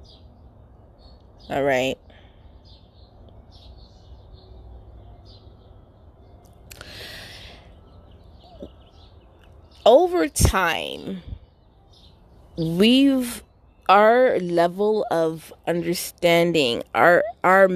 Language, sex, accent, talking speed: English, female, American, 35 wpm